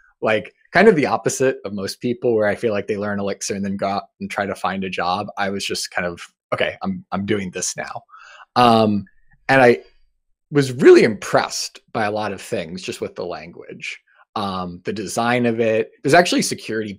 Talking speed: 210 wpm